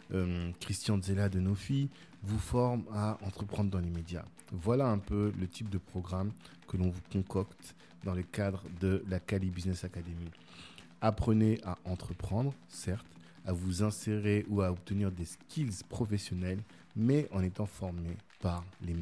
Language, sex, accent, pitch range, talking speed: French, male, French, 90-105 Hz, 155 wpm